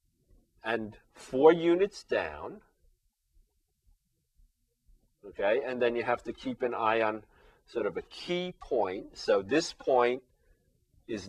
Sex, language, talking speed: male, English, 120 wpm